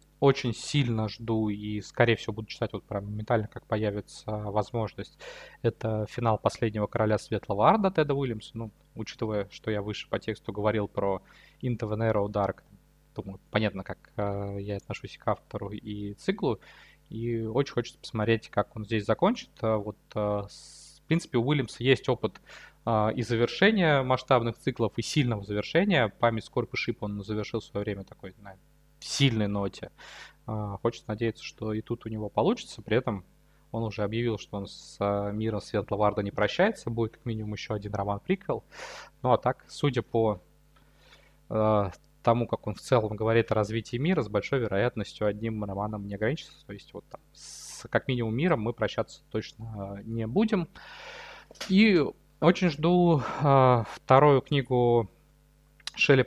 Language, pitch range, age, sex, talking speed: Russian, 105-130 Hz, 20-39, male, 160 wpm